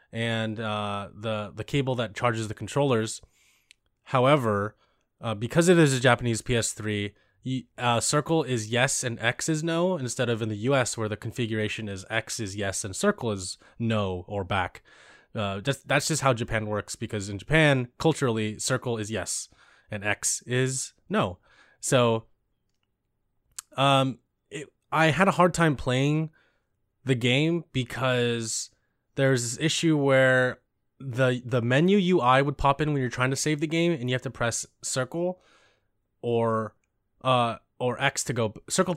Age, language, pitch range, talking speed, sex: 20-39, English, 110-135 Hz, 160 wpm, male